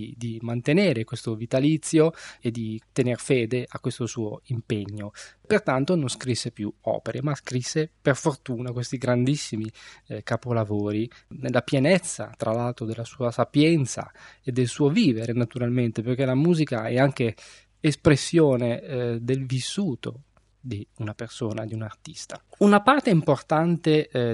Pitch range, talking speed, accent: 115-150 Hz, 135 wpm, native